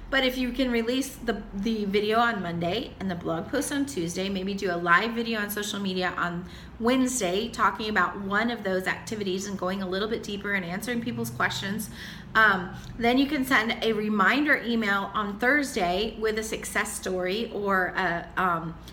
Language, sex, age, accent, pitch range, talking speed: English, female, 30-49, American, 195-250 Hz, 185 wpm